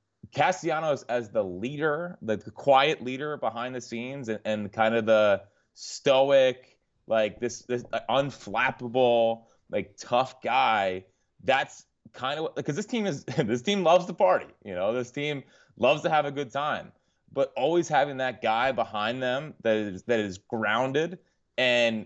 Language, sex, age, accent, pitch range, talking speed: English, male, 30-49, American, 110-135 Hz, 155 wpm